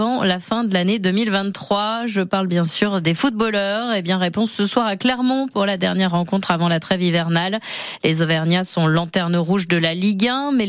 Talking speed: 210 wpm